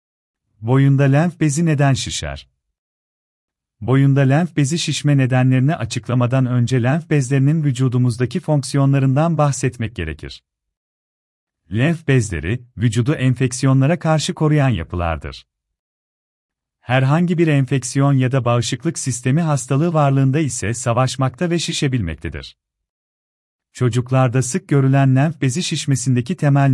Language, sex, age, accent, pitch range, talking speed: Turkish, male, 40-59, native, 100-150 Hz, 100 wpm